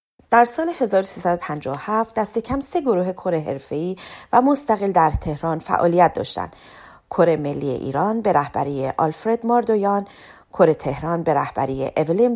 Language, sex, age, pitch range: Persian, female, 30-49, 155-220 Hz